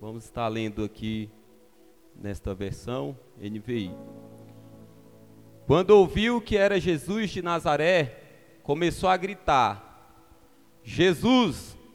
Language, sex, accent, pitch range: Portuguese, male, Brazilian, 155-220 Hz